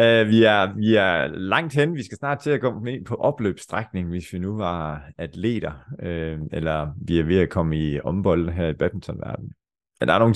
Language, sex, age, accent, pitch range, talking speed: Danish, male, 30-49, native, 85-110 Hz, 210 wpm